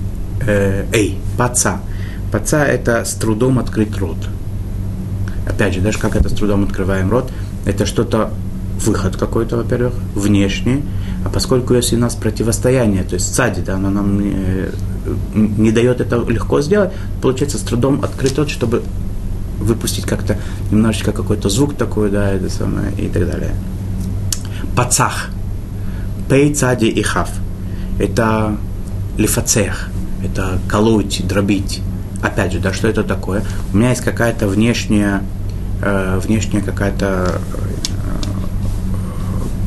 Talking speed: 125 wpm